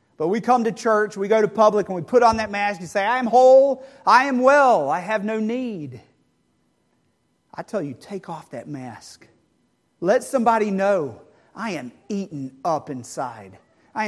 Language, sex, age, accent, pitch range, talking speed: English, male, 40-59, American, 160-220 Hz, 185 wpm